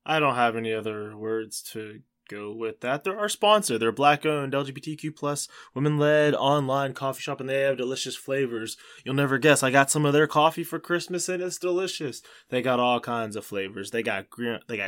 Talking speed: 195 wpm